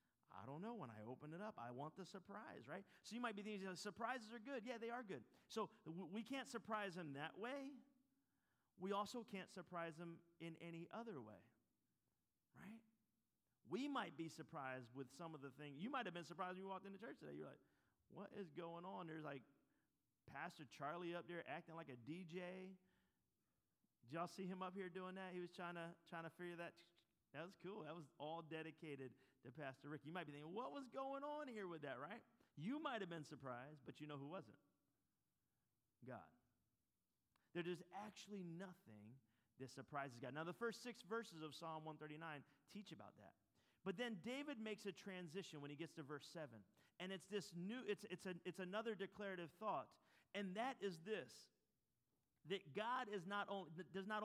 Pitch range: 155-205 Hz